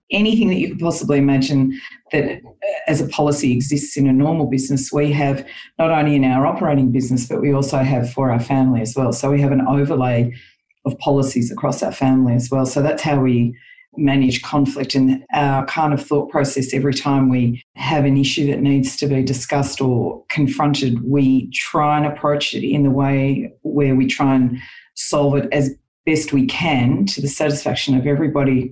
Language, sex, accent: English, female, Australian